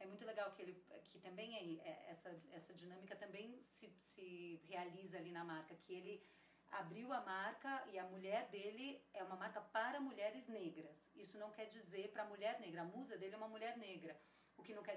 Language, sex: Portuguese, female